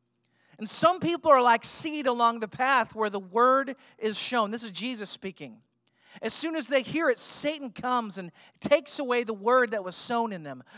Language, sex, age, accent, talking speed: English, male, 40-59, American, 200 wpm